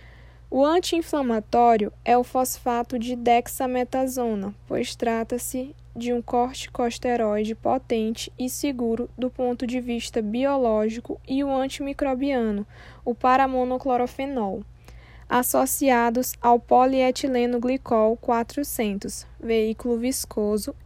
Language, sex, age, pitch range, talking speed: Portuguese, female, 10-29, 225-255 Hz, 90 wpm